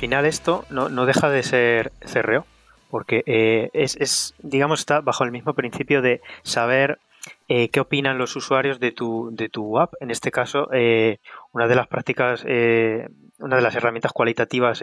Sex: male